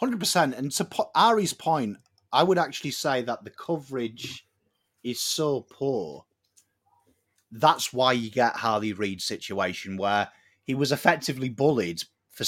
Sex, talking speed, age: male, 135 wpm, 30-49